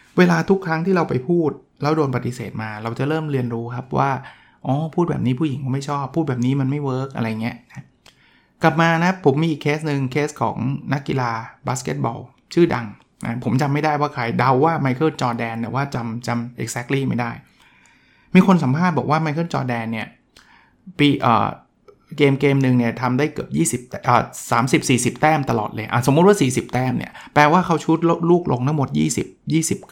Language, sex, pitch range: Thai, male, 125-165 Hz